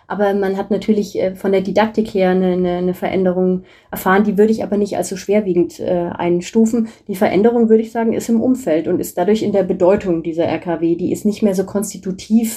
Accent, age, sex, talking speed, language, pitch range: German, 30-49, female, 205 wpm, German, 190-220 Hz